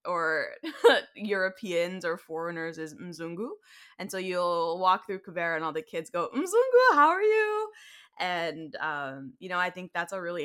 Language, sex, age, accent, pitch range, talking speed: English, female, 20-39, American, 155-190 Hz, 170 wpm